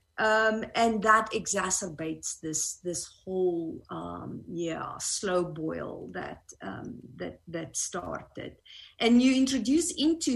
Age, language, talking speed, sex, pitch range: 50-69, English, 115 wpm, female, 170-225 Hz